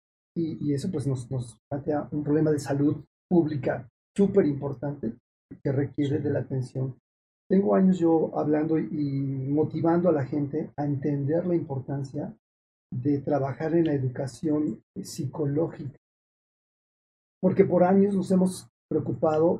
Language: Spanish